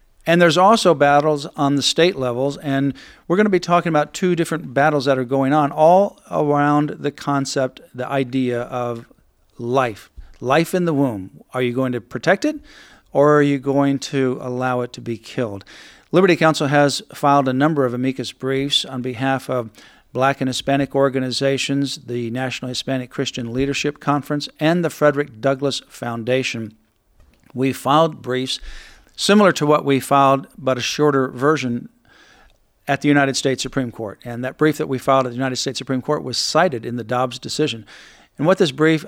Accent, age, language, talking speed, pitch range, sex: American, 50-69, English, 180 wpm, 125-150 Hz, male